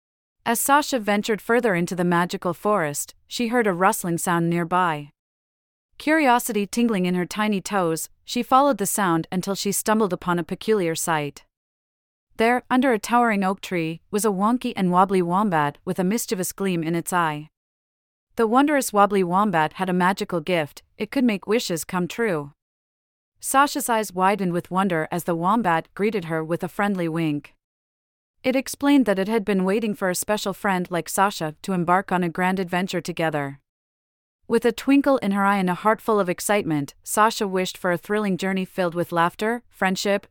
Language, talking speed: English, 180 wpm